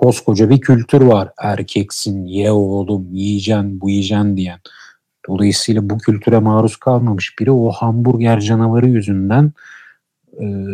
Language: Turkish